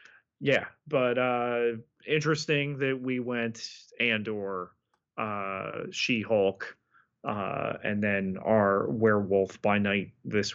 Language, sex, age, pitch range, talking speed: English, male, 30-49, 110-155 Hz, 95 wpm